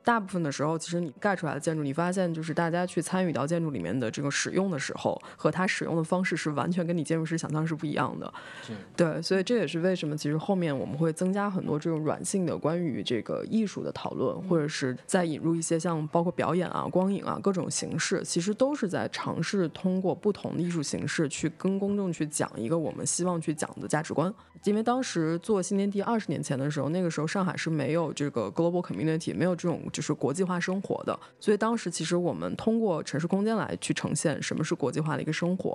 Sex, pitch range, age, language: female, 155-185 Hz, 20-39, Chinese